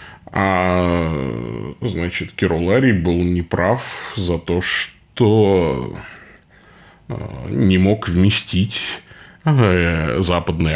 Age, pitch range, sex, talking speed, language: 20-39, 90-110 Hz, male, 65 wpm, Russian